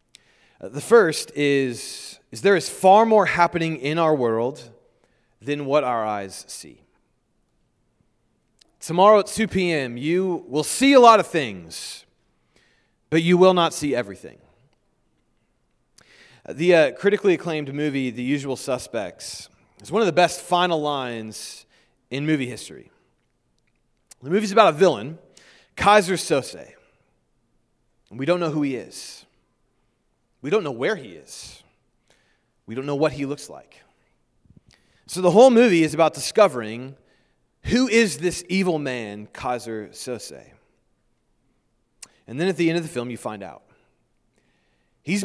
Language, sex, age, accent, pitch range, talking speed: English, male, 30-49, American, 115-175 Hz, 140 wpm